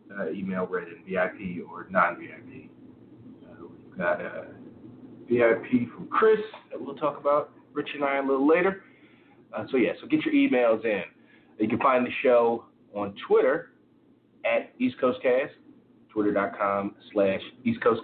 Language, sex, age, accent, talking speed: English, male, 30-49, American, 155 wpm